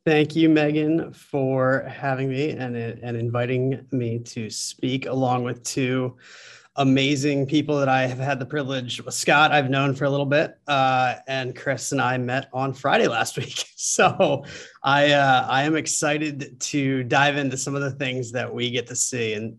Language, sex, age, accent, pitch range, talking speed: English, male, 30-49, American, 125-150 Hz, 185 wpm